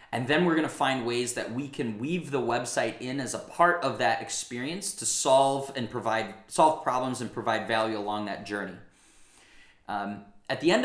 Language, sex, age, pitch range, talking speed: English, male, 20-39, 110-135 Hz, 200 wpm